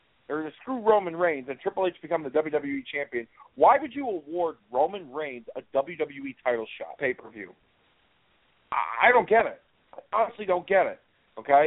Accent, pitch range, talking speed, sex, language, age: American, 140-175 Hz, 180 wpm, male, English, 40-59